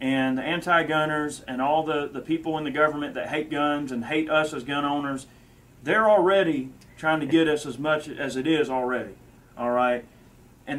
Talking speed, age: 200 wpm, 30-49